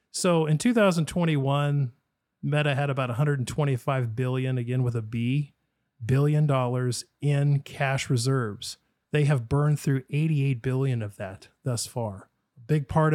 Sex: male